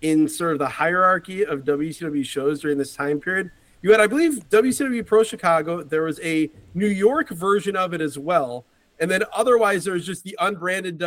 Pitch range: 140-180 Hz